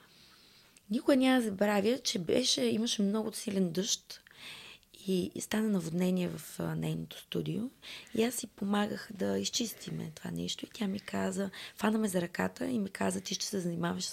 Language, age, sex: Bulgarian, 20-39, female